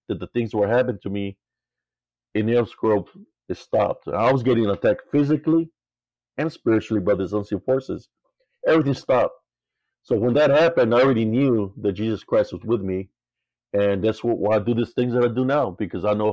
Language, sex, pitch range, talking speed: English, male, 110-130 Hz, 190 wpm